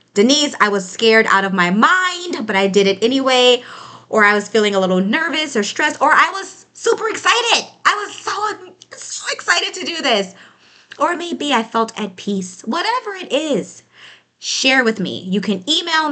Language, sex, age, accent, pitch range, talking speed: English, female, 20-39, American, 200-275 Hz, 185 wpm